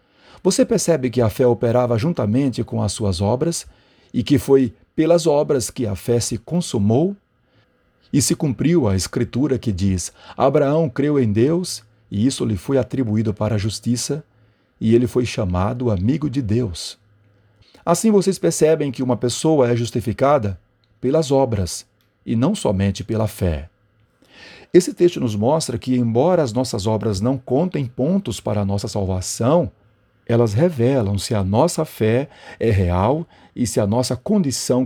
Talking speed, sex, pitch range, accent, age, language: 155 wpm, male, 105-135 Hz, Brazilian, 40-59, Portuguese